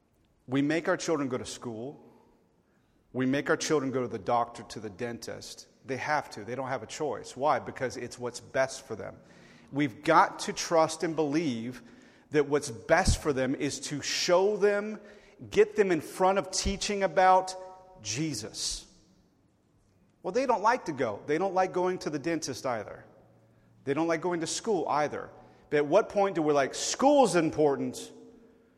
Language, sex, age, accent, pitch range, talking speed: English, male, 40-59, American, 125-170 Hz, 180 wpm